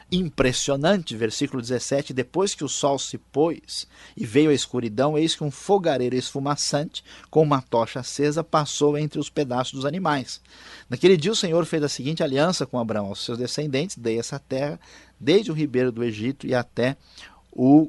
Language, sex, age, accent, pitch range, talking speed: Portuguese, male, 50-69, Brazilian, 120-145 Hz, 175 wpm